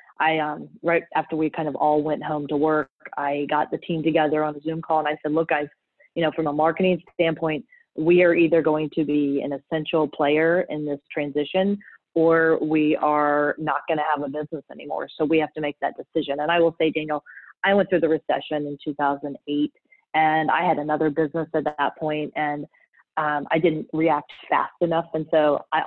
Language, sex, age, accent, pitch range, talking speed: English, female, 30-49, American, 150-165 Hz, 210 wpm